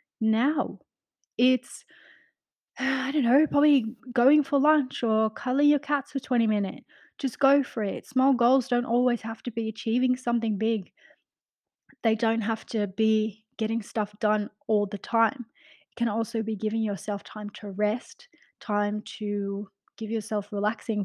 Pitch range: 205-245 Hz